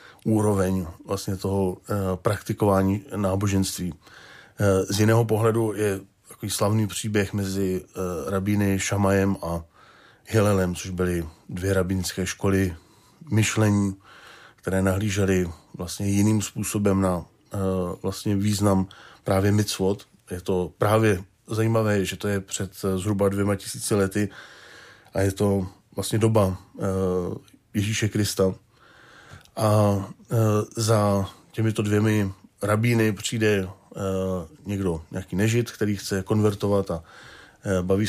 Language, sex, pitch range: Czech, male, 95-110 Hz